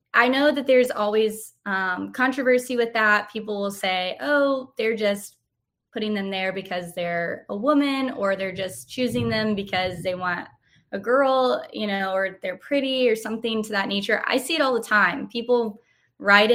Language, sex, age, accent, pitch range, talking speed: English, female, 20-39, American, 195-230 Hz, 180 wpm